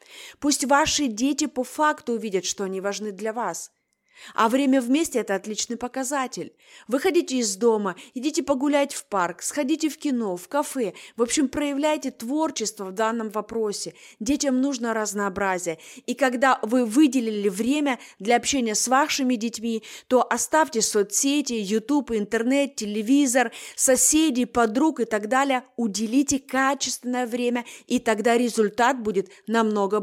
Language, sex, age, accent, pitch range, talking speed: Russian, female, 20-39, native, 215-275 Hz, 135 wpm